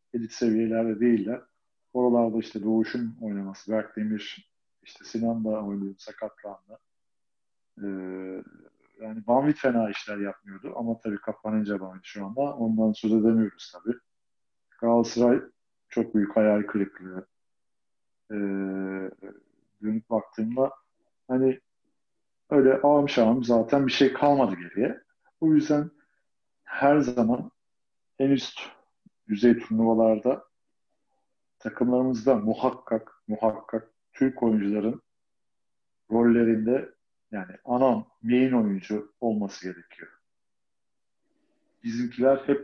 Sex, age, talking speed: male, 50-69, 95 wpm